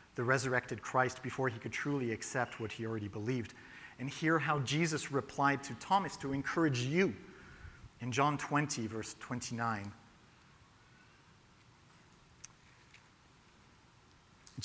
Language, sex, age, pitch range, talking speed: English, male, 50-69, 115-145 Hz, 110 wpm